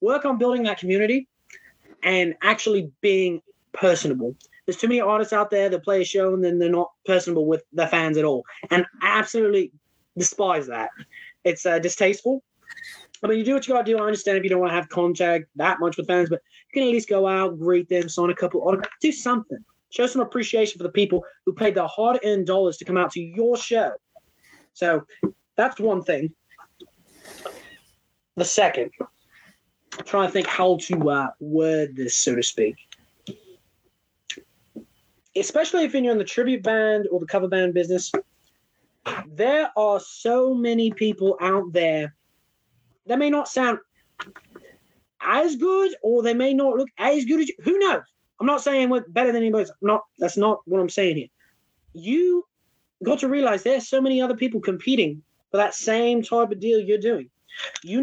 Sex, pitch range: male, 180-250 Hz